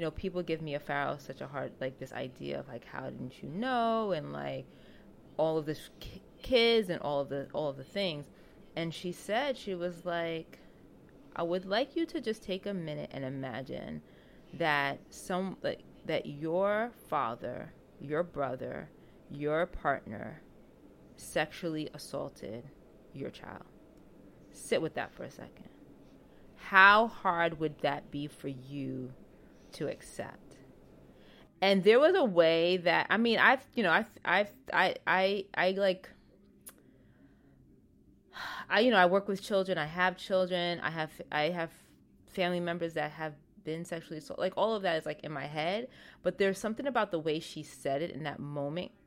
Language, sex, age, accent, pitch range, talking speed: English, female, 20-39, American, 145-190 Hz, 165 wpm